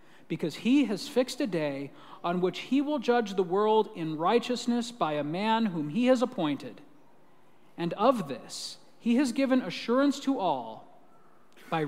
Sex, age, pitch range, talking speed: male, 40-59, 180-260 Hz, 160 wpm